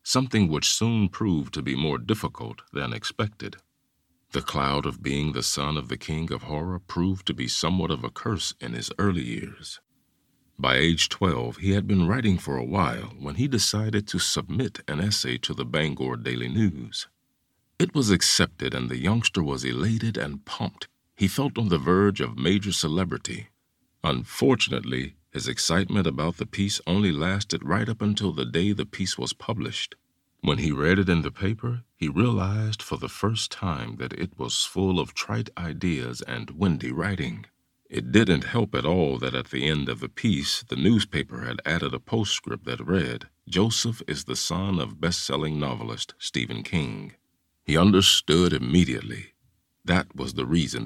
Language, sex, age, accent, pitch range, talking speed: English, male, 50-69, American, 70-100 Hz, 175 wpm